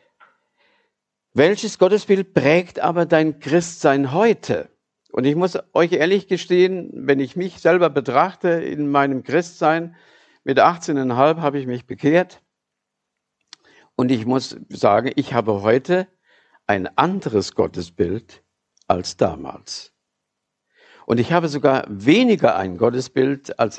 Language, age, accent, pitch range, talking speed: German, 50-69, German, 105-165 Hz, 120 wpm